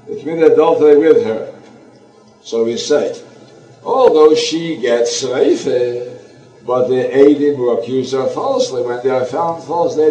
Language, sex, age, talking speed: English, male, 60-79, 150 wpm